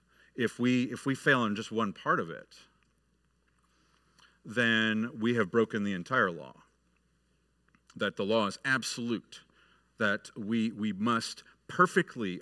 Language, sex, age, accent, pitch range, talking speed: English, male, 50-69, American, 105-145 Hz, 135 wpm